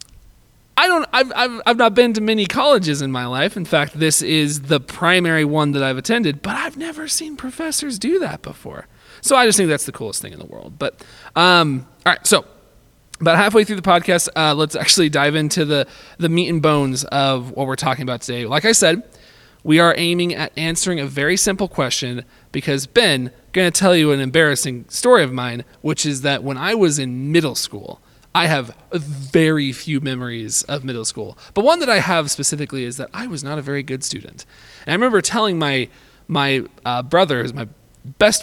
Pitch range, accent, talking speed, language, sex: 130-180 Hz, American, 210 wpm, English, male